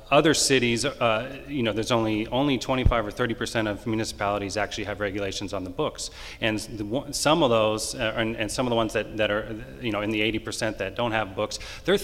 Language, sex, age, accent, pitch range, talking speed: English, male, 30-49, American, 105-125 Hz, 225 wpm